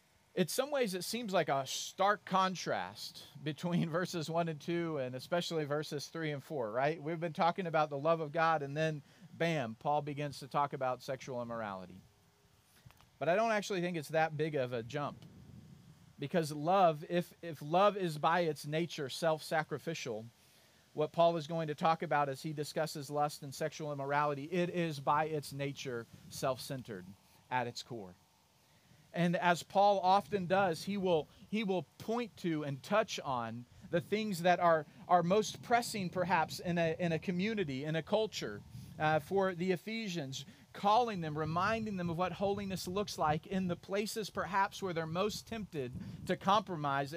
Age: 40-59